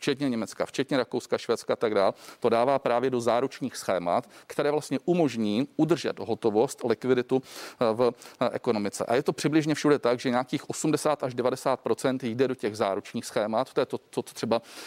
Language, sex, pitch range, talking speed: Czech, male, 115-145 Hz, 180 wpm